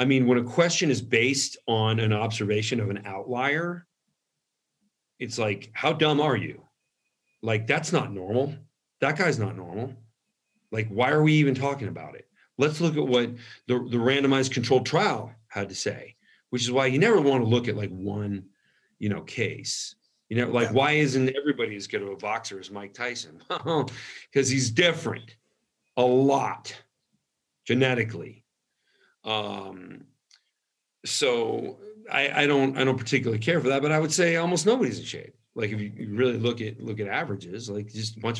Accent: American